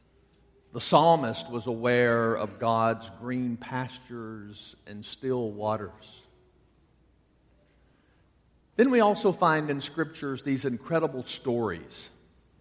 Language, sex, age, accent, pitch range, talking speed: English, male, 50-69, American, 115-155 Hz, 95 wpm